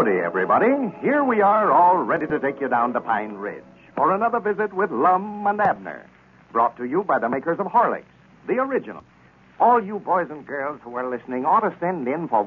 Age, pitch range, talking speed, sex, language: 60-79, 135-215 Hz, 210 wpm, male, English